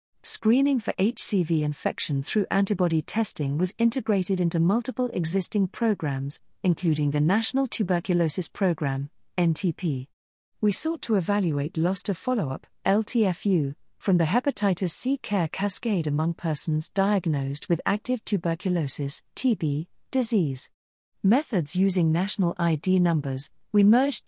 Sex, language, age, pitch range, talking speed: female, English, 40-59, 160-210 Hz, 120 wpm